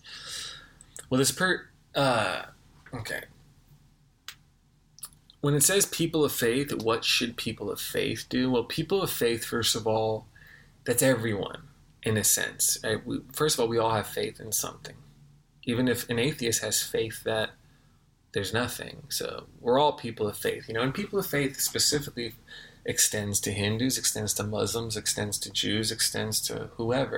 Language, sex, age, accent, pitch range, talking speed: English, male, 20-39, American, 110-140 Hz, 160 wpm